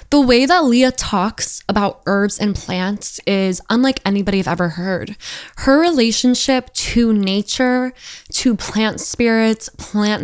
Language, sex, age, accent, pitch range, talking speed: English, female, 10-29, American, 195-230 Hz, 135 wpm